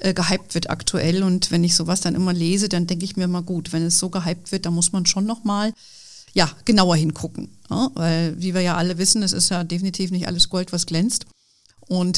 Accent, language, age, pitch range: German, German, 40-59, 170-200 Hz